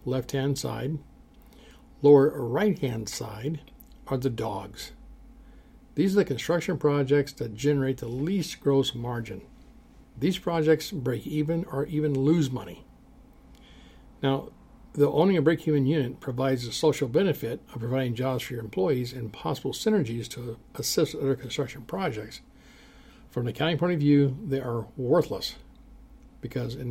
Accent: American